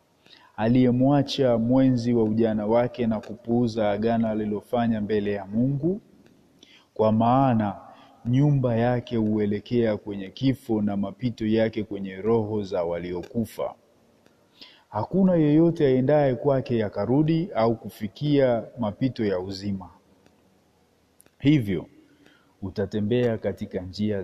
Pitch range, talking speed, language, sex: 100-145 Hz, 100 wpm, Swahili, male